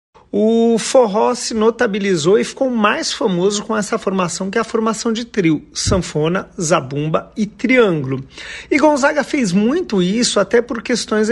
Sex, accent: male, Brazilian